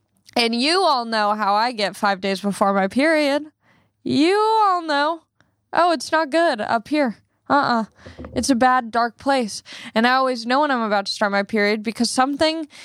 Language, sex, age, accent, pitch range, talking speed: English, female, 10-29, American, 210-270 Hz, 190 wpm